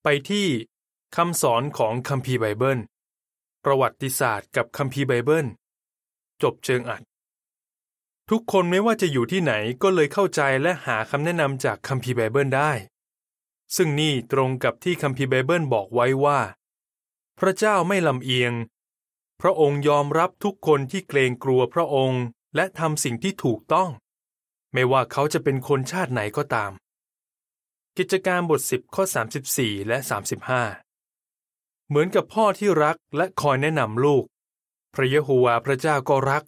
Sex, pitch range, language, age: male, 125-160 Hz, Thai, 20-39